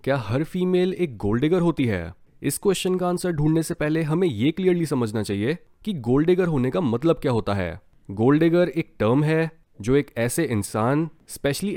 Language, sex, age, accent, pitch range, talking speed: Hindi, male, 20-39, native, 120-170 Hz, 185 wpm